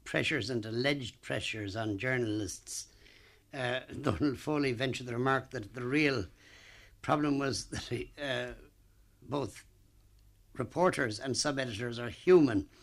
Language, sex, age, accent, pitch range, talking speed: English, male, 60-79, Irish, 120-145 Hz, 120 wpm